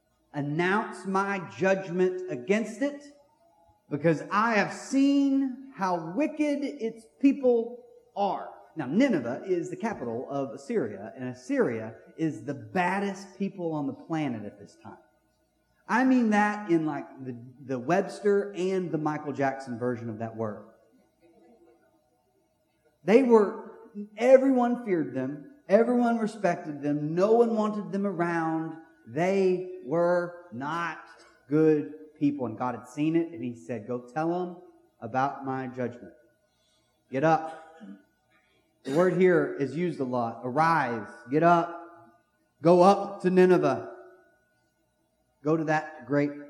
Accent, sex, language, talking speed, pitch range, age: American, male, English, 130 wpm, 135-195 Hz, 40-59